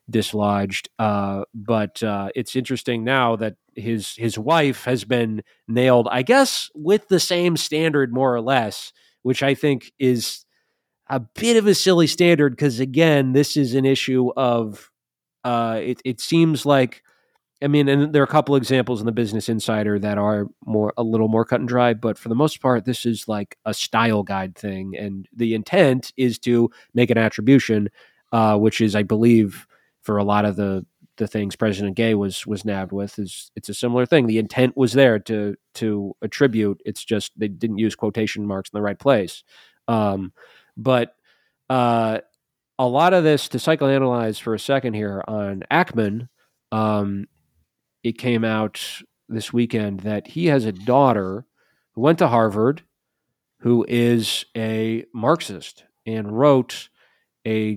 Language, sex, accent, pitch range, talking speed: English, male, American, 105-130 Hz, 170 wpm